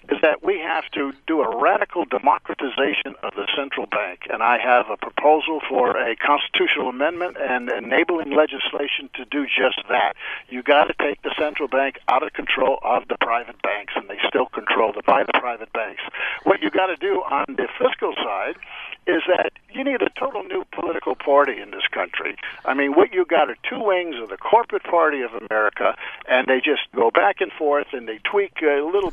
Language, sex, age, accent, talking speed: English, male, 60-79, American, 205 wpm